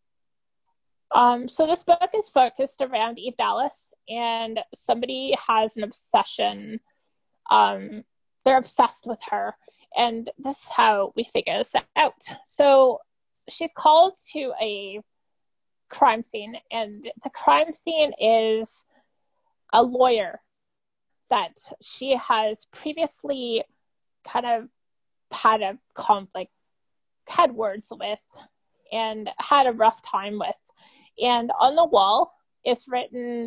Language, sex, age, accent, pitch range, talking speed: English, female, 20-39, American, 220-280 Hz, 115 wpm